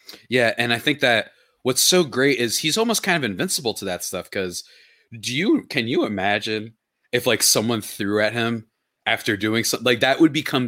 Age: 30-49